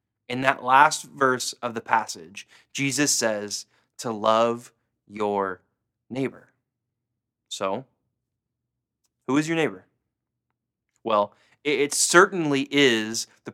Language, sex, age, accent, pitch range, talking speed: English, male, 20-39, American, 110-145 Hz, 100 wpm